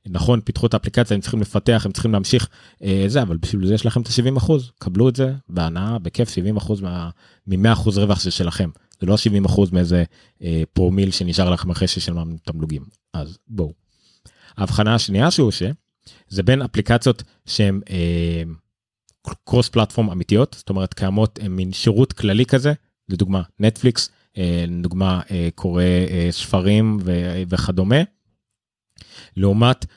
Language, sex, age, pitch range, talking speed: Hebrew, male, 30-49, 90-115 Hz, 150 wpm